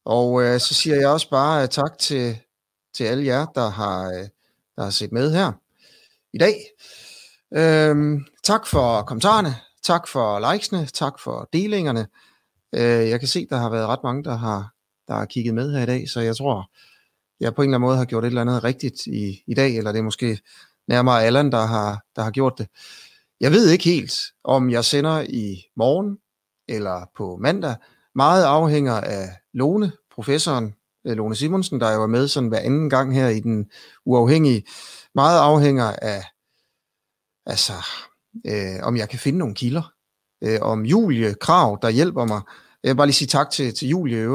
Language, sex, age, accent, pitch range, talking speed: Danish, male, 30-49, native, 110-145 Hz, 190 wpm